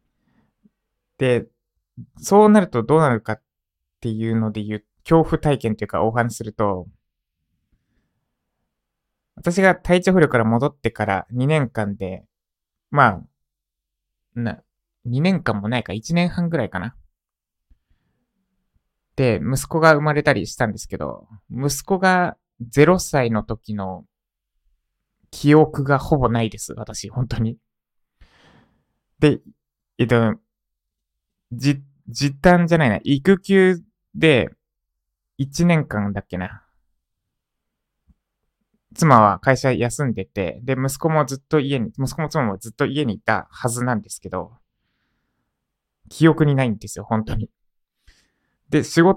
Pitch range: 105-155 Hz